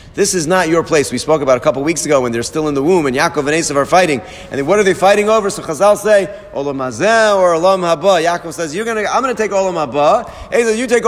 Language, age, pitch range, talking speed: English, 40-59, 120-190 Hz, 280 wpm